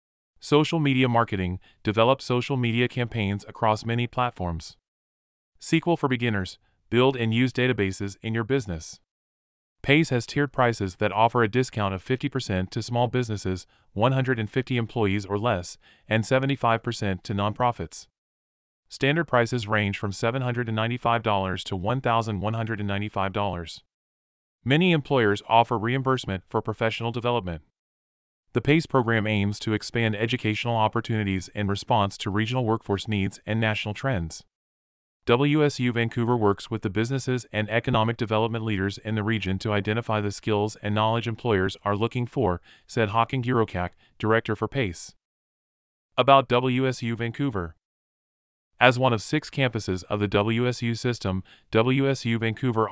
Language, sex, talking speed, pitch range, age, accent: English, male, 130 wpm, 100-125 Hz, 30-49, American